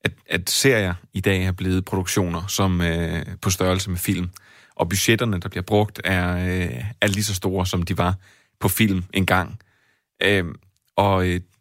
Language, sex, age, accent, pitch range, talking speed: Danish, male, 30-49, native, 95-110 Hz, 155 wpm